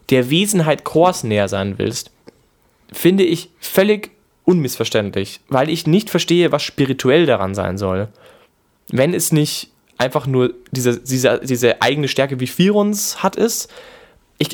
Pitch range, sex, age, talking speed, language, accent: 130-170 Hz, male, 20-39, 135 wpm, German, German